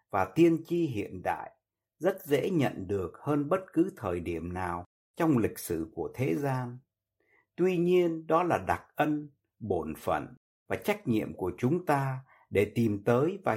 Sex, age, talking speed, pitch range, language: male, 60-79, 170 wpm, 110-165 Hz, Vietnamese